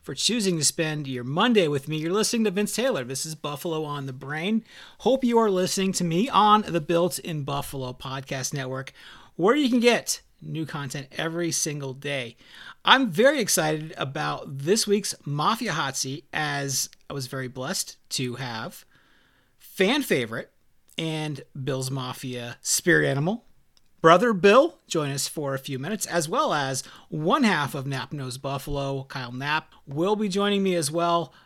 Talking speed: 170 wpm